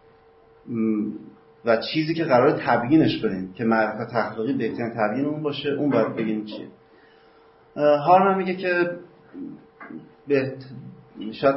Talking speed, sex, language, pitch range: 110 wpm, male, Persian, 110-125 Hz